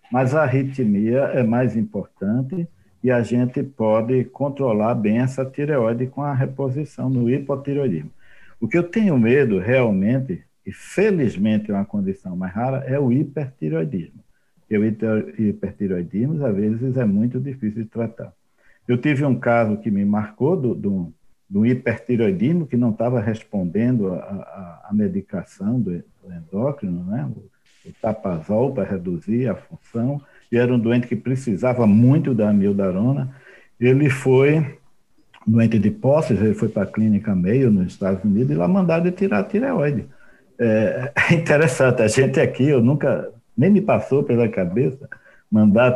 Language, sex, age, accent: English, male, 60-79, Brazilian